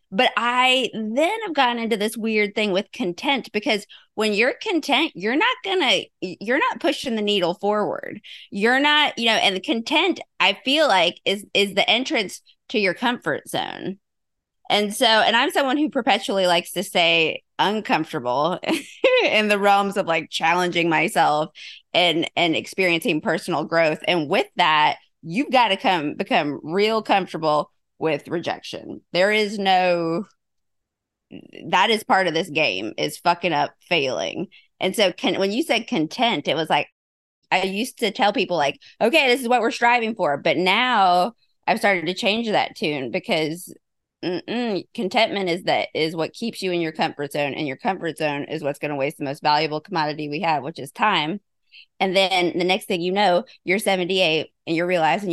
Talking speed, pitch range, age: 180 wpm, 165-230 Hz, 20-39